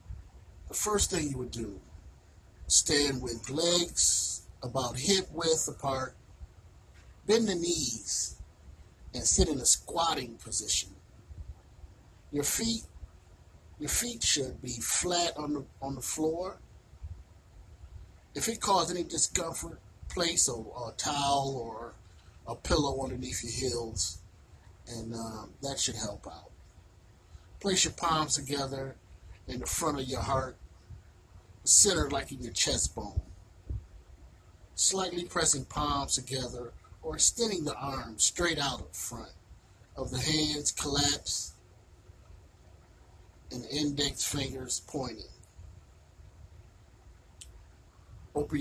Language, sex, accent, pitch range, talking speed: English, male, American, 90-140 Hz, 110 wpm